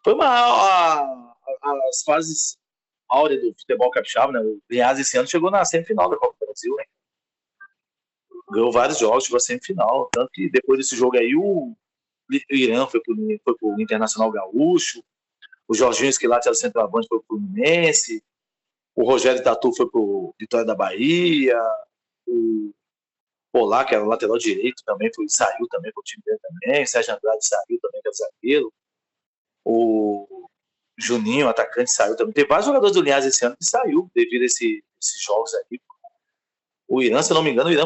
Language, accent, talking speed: Portuguese, Brazilian, 180 wpm